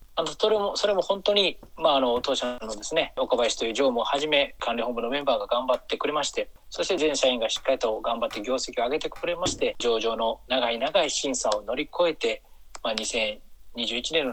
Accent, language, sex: native, Japanese, male